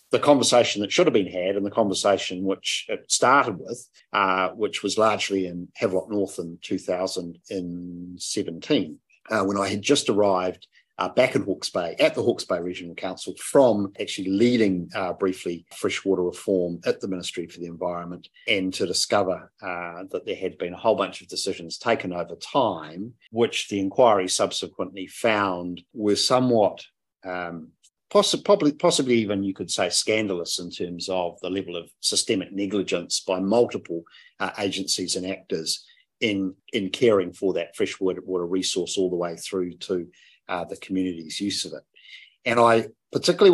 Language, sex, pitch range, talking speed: English, male, 90-105 Hz, 165 wpm